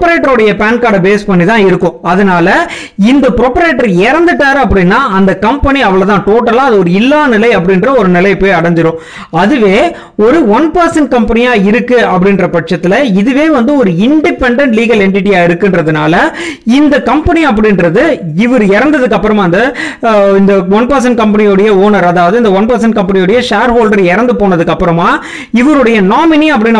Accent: native